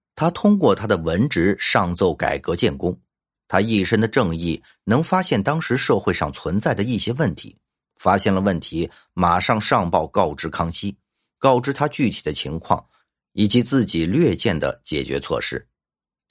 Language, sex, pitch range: Chinese, male, 90-125 Hz